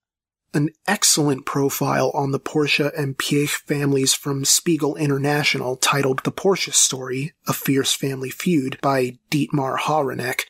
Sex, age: male, 30-49